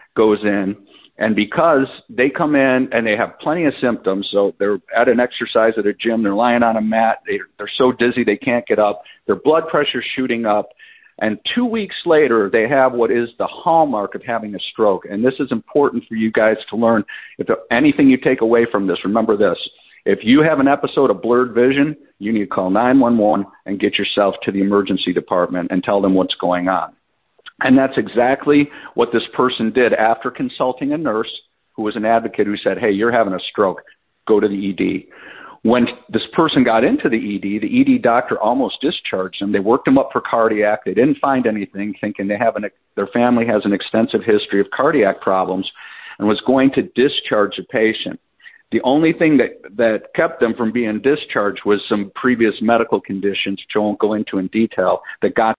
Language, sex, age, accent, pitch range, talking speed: English, male, 50-69, American, 100-125 Hz, 205 wpm